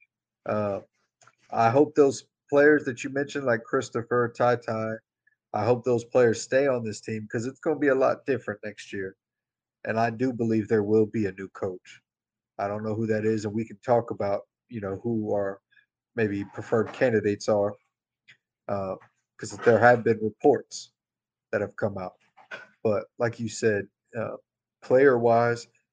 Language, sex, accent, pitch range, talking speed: English, male, American, 110-135 Hz, 175 wpm